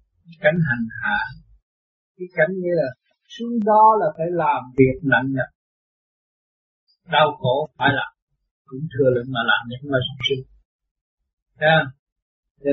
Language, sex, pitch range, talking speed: Vietnamese, male, 130-175 Hz, 110 wpm